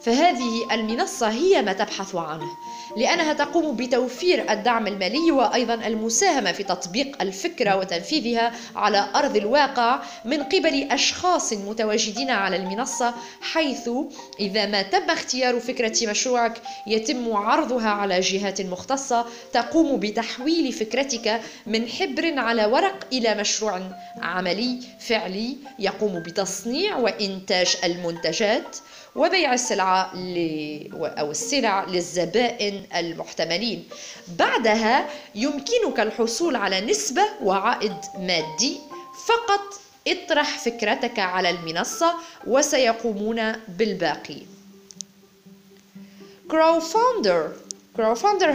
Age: 20-39